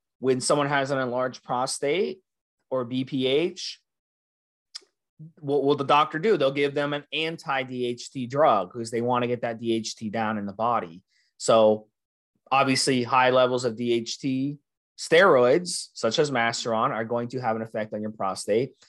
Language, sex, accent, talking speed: English, male, American, 155 wpm